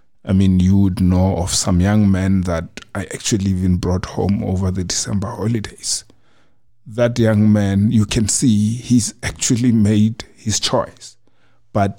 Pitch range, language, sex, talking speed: 90-105 Hz, English, male, 155 wpm